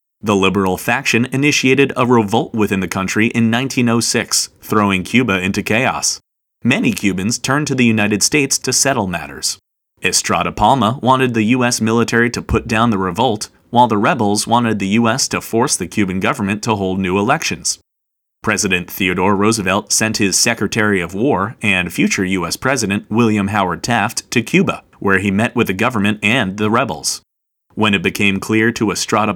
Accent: American